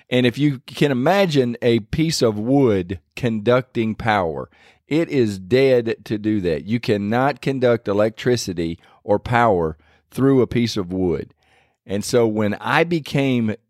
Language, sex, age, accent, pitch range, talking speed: English, male, 50-69, American, 105-135 Hz, 145 wpm